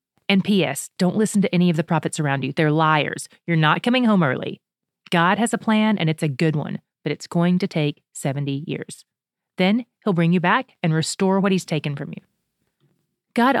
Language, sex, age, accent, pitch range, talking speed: English, female, 30-49, American, 160-205 Hz, 205 wpm